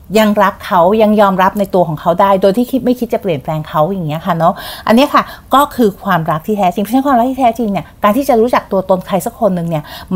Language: Thai